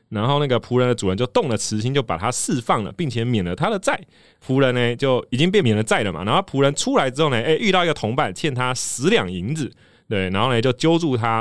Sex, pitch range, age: male, 115-165 Hz, 20-39